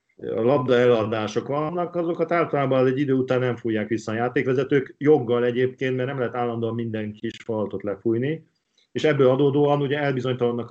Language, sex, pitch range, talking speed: Hungarian, male, 110-130 Hz, 165 wpm